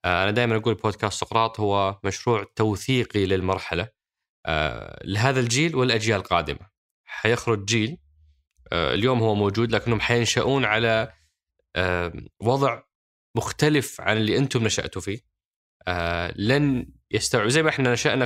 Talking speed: 110 wpm